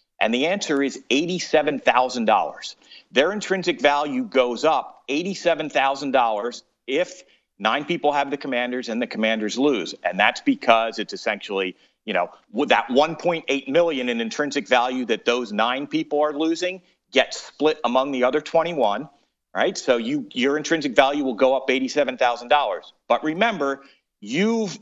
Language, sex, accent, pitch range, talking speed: English, male, American, 125-175 Hz, 145 wpm